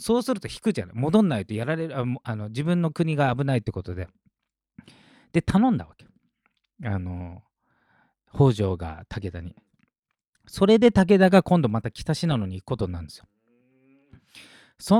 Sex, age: male, 40-59